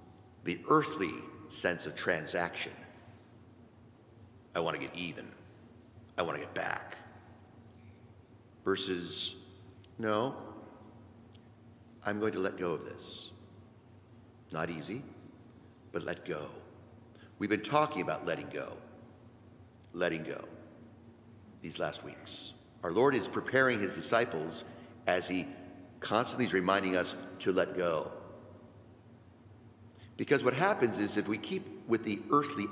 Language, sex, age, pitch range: English, male, 50-69, 100-120 Hz